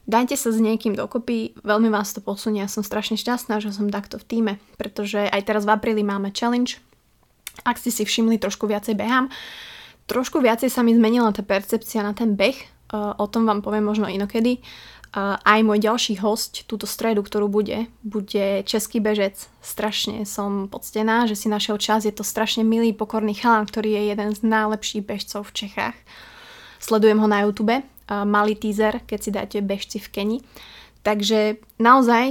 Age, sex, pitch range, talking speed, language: 20-39, female, 205-230 Hz, 175 wpm, Slovak